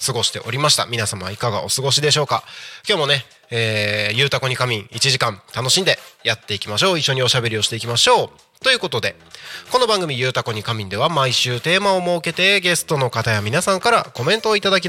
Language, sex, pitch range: Japanese, male, 115-170 Hz